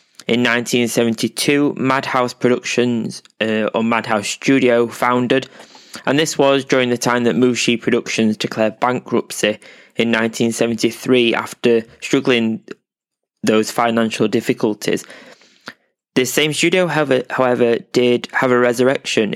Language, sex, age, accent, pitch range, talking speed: English, male, 20-39, British, 115-125 Hz, 110 wpm